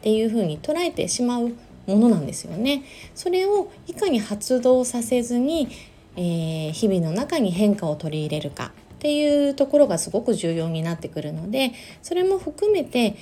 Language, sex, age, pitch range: Japanese, female, 20-39, 165-270 Hz